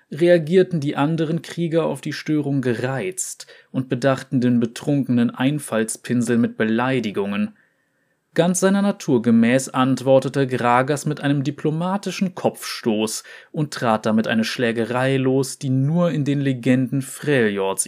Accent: German